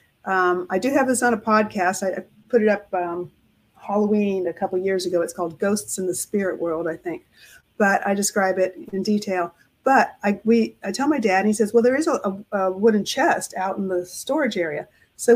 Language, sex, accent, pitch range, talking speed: English, female, American, 190-235 Hz, 225 wpm